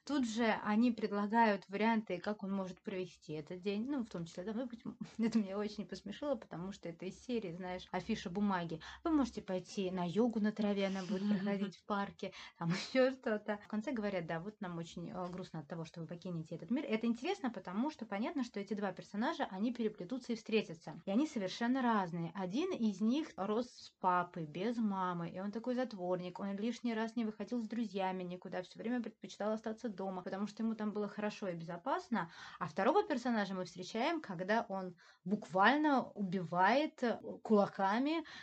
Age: 20-39